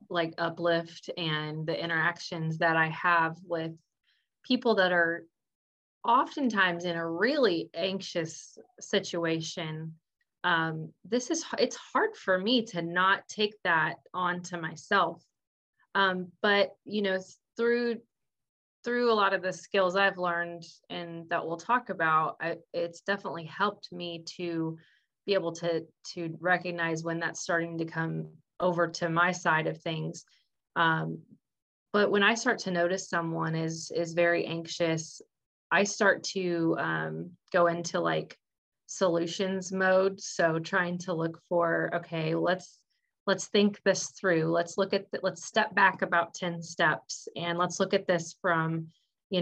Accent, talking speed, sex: American, 145 wpm, female